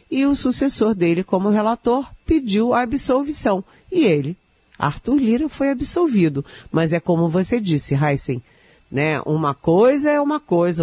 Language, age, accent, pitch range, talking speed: Portuguese, 50-69, Brazilian, 145-220 Hz, 150 wpm